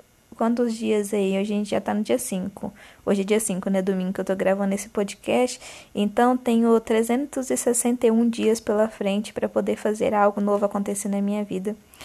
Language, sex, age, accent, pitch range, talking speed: Portuguese, female, 20-39, Brazilian, 200-230 Hz, 185 wpm